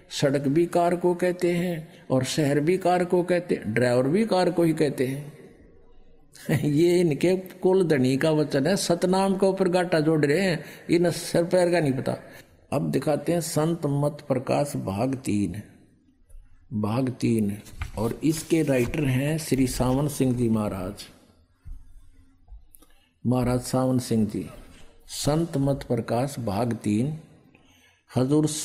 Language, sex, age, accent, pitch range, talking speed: Hindi, male, 50-69, native, 105-150 Hz, 145 wpm